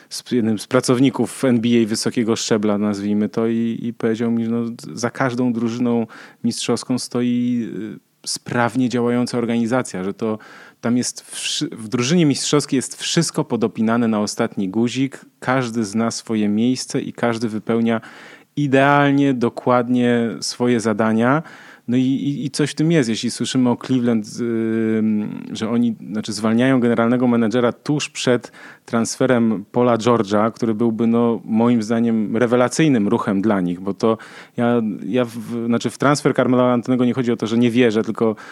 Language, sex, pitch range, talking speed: Polish, male, 115-125 Hz, 150 wpm